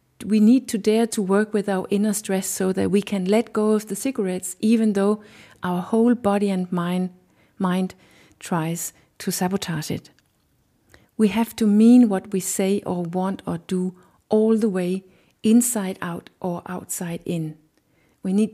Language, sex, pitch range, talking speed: English, female, 180-210 Hz, 170 wpm